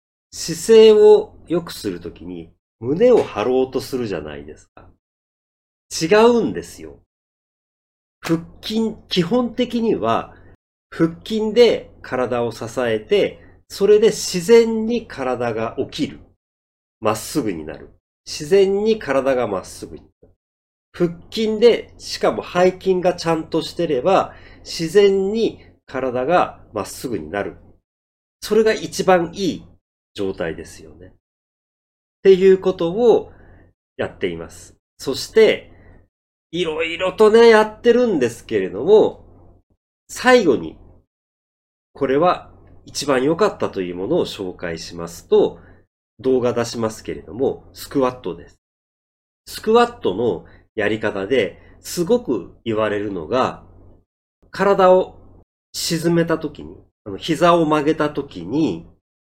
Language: Japanese